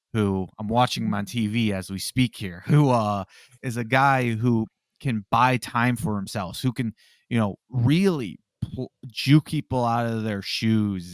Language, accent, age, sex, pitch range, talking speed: English, American, 30-49, male, 105-130 Hz, 180 wpm